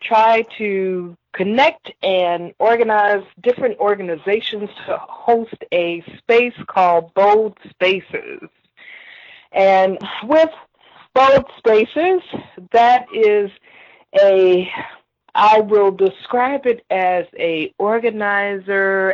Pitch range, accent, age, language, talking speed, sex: 175-245 Hz, American, 40-59, English, 90 wpm, female